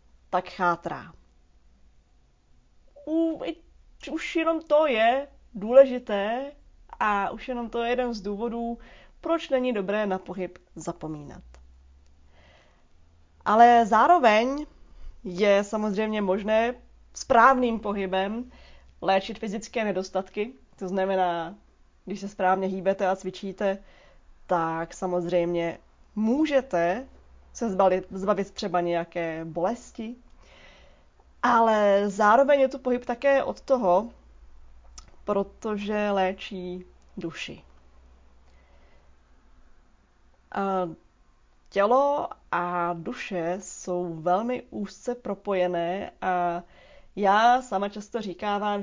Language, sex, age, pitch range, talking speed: Czech, female, 20-39, 175-220 Hz, 85 wpm